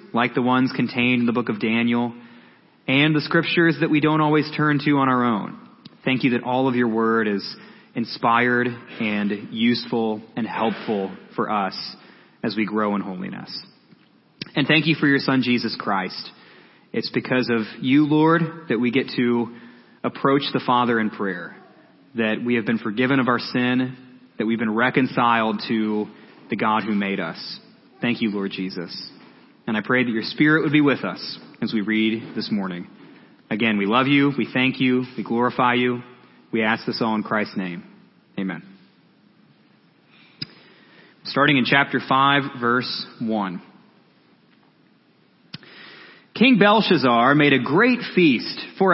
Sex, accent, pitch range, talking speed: male, American, 115-150 Hz, 160 wpm